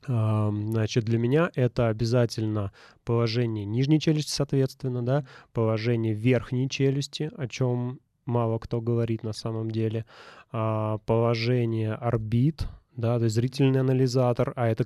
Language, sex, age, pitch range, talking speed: Russian, male, 20-39, 110-130 Hz, 115 wpm